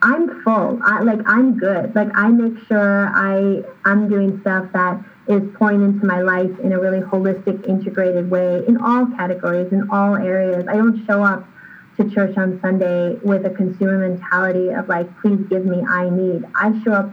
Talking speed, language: 190 wpm, English